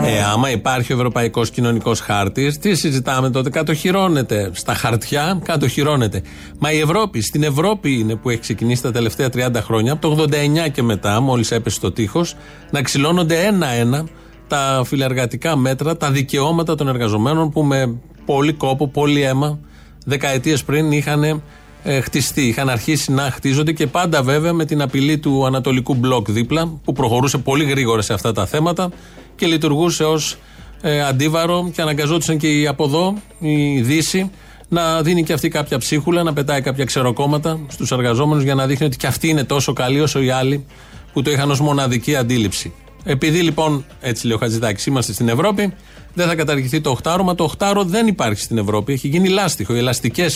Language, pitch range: Greek, 125-160 Hz